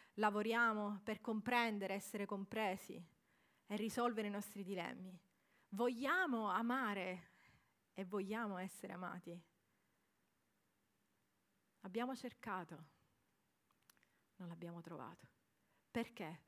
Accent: native